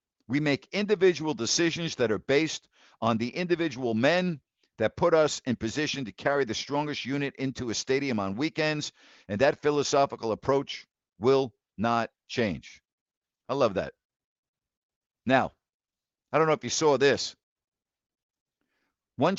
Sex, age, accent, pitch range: male, 50-69, American, 125-160 Hz